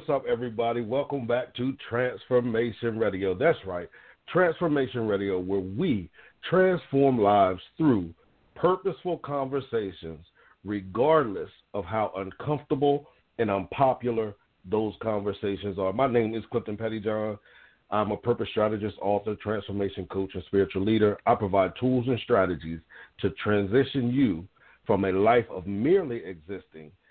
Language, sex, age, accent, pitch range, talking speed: English, male, 50-69, American, 100-130 Hz, 125 wpm